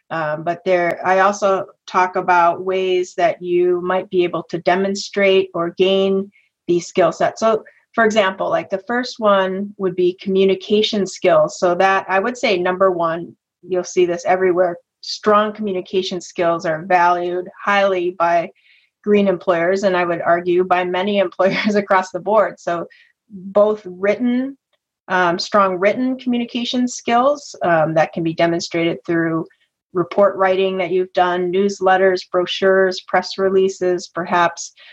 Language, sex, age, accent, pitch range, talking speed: English, female, 30-49, American, 175-205 Hz, 145 wpm